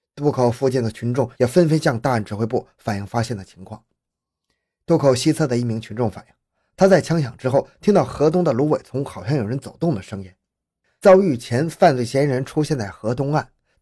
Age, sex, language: 20-39, male, Chinese